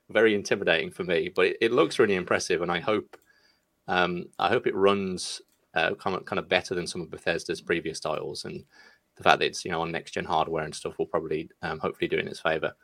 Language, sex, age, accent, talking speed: English, male, 20-39, British, 235 wpm